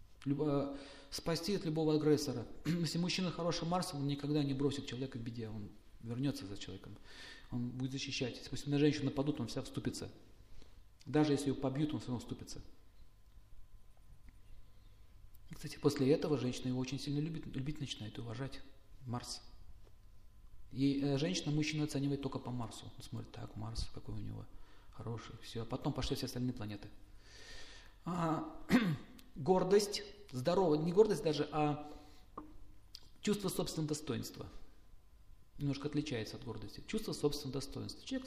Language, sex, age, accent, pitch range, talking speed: Russian, male, 40-59, native, 105-150 Hz, 140 wpm